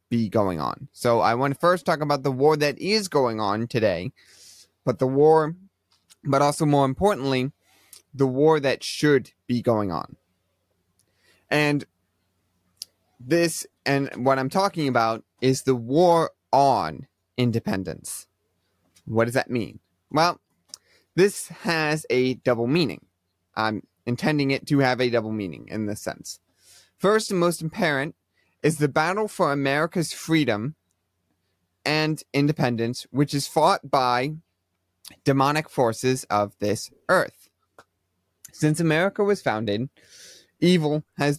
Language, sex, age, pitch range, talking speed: English, male, 30-49, 100-150 Hz, 130 wpm